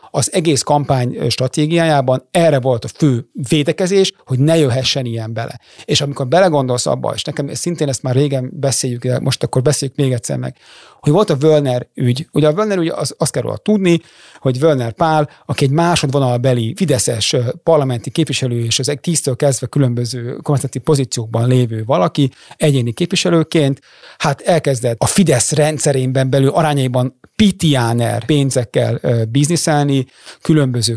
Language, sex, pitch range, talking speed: Hungarian, male, 125-155 Hz, 150 wpm